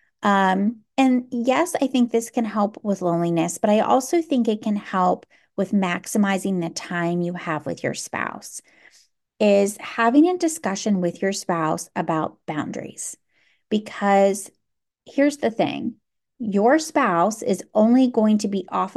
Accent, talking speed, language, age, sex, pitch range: American, 150 wpm, English, 30-49, female, 180-225 Hz